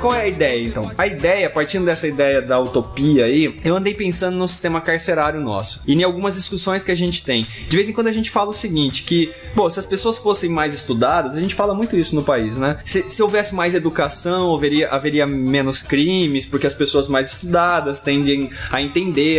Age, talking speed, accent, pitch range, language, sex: 20-39, 215 wpm, Brazilian, 140-185 Hz, Portuguese, male